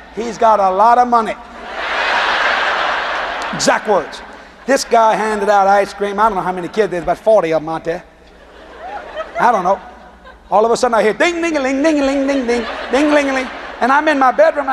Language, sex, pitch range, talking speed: English, male, 200-255 Hz, 215 wpm